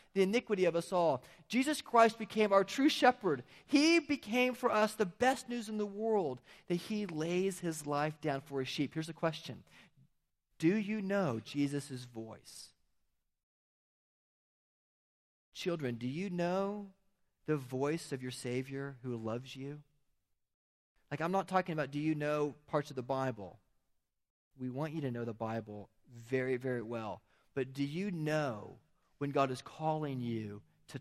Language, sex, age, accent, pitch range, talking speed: English, male, 40-59, American, 135-205 Hz, 160 wpm